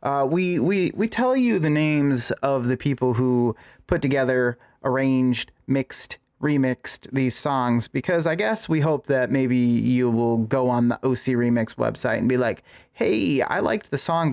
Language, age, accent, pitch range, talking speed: English, 30-49, American, 120-140 Hz, 175 wpm